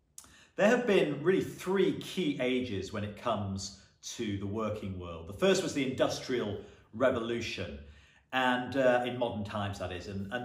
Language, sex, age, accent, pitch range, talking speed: English, male, 40-59, British, 100-135 Hz, 165 wpm